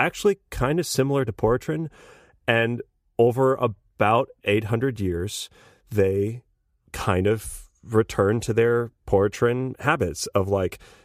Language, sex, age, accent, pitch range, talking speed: English, male, 30-49, American, 100-120 Hz, 115 wpm